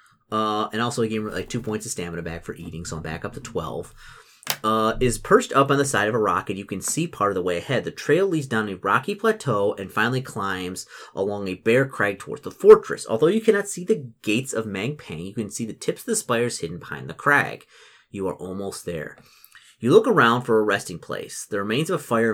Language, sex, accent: English, male, American